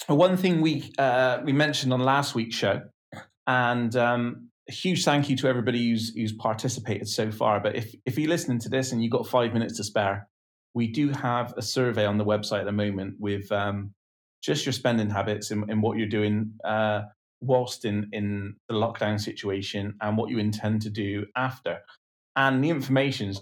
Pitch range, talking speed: 100-120 Hz, 195 wpm